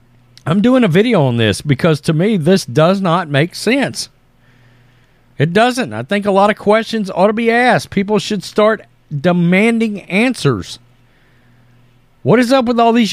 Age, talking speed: 40-59, 170 wpm